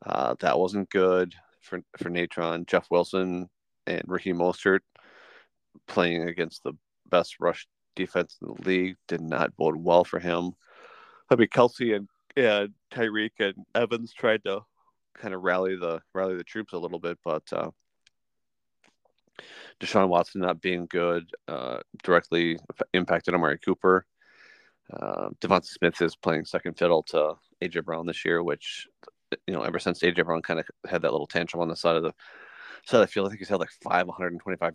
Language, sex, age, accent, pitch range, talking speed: English, male, 30-49, American, 85-95 Hz, 175 wpm